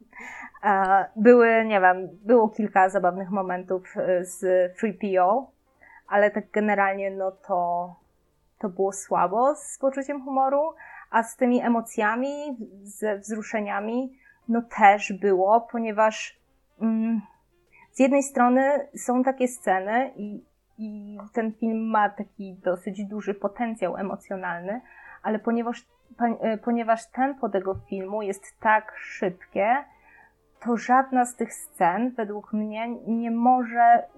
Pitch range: 195-235 Hz